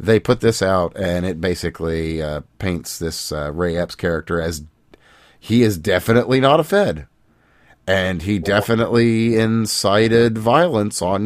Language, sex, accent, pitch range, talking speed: English, male, American, 85-120 Hz, 145 wpm